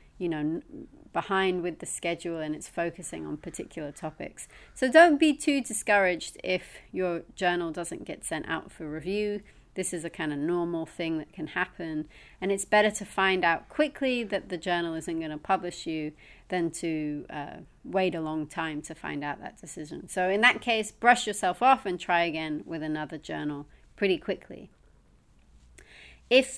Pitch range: 165-210 Hz